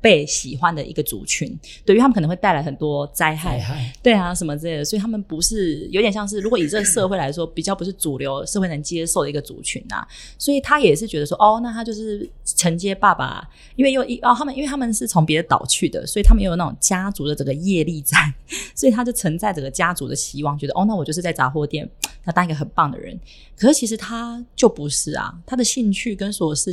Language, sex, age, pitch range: Chinese, female, 30-49, 155-220 Hz